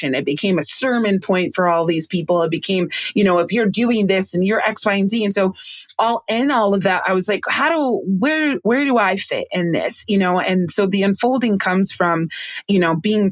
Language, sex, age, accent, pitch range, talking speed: English, female, 20-39, American, 180-220 Hz, 240 wpm